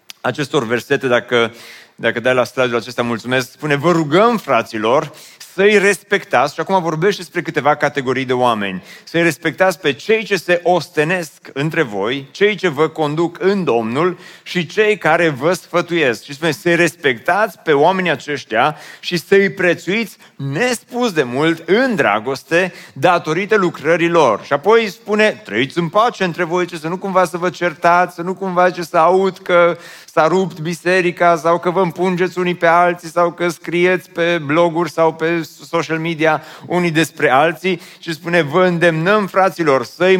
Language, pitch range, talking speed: Romanian, 150-180 Hz, 165 wpm